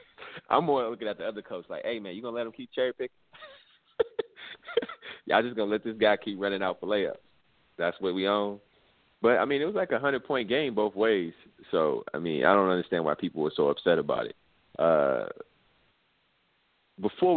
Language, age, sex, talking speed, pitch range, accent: English, 30-49, male, 205 wpm, 95-120 Hz, American